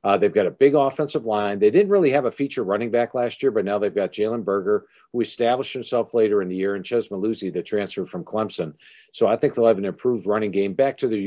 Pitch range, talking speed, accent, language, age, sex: 105-135 Hz, 260 wpm, American, English, 50-69, male